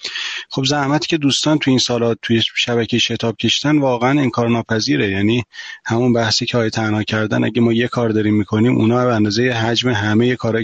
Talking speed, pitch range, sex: 190 wpm, 110-130 Hz, male